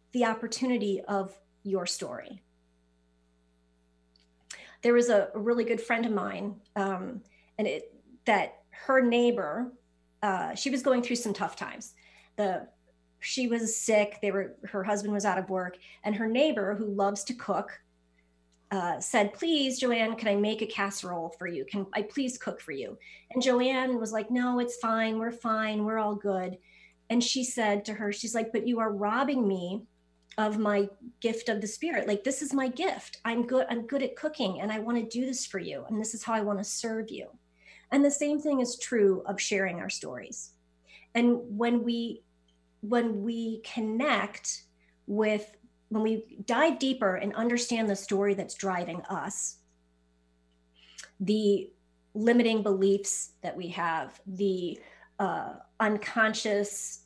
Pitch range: 190-235 Hz